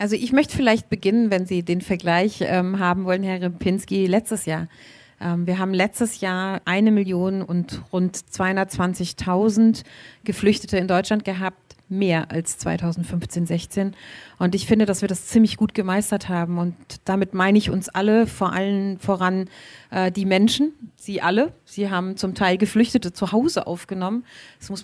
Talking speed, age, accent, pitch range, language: 165 wpm, 30-49, German, 185-215 Hz, German